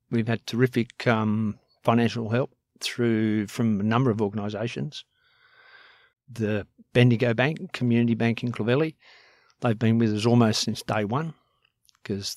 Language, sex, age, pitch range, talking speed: English, male, 50-69, 110-130 Hz, 135 wpm